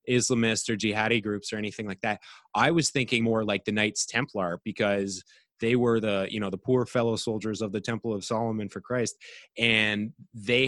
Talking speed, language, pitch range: 195 wpm, English, 105-125 Hz